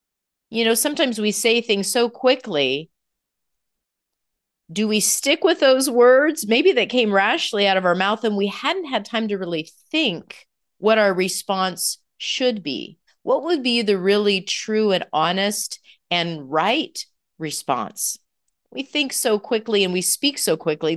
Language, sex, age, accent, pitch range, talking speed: English, female, 40-59, American, 180-260 Hz, 155 wpm